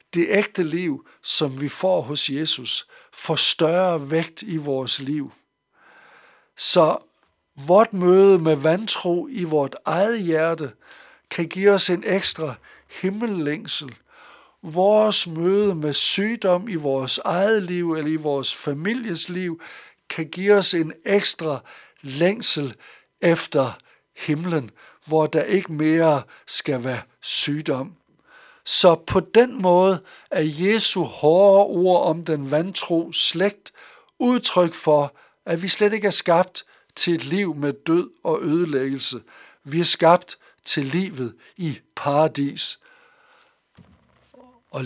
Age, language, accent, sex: 60-79, Danish, native, male